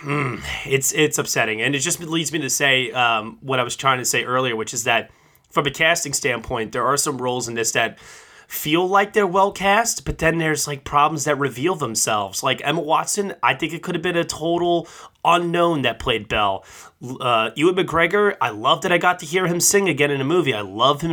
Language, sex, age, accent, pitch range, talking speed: English, male, 20-39, American, 130-175 Hz, 225 wpm